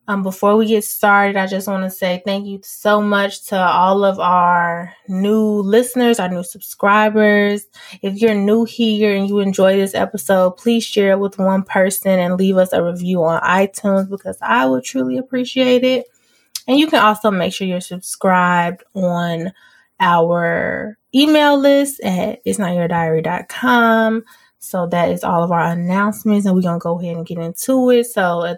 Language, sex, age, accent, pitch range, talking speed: English, female, 20-39, American, 180-215 Hz, 180 wpm